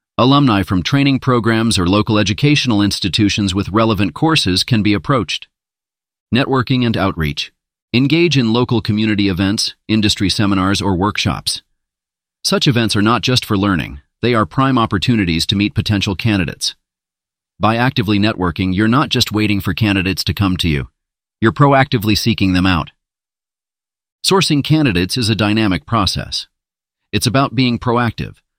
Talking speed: 145 wpm